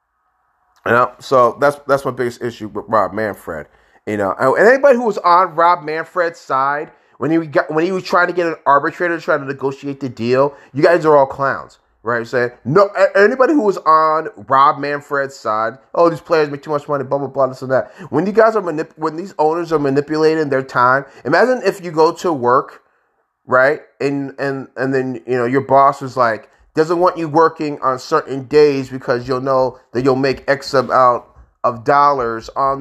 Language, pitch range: English, 130-170 Hz